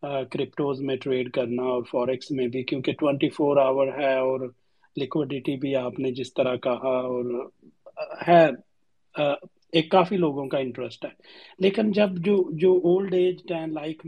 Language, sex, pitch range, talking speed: Urdu, male, 135-170 Hz, 155 wpm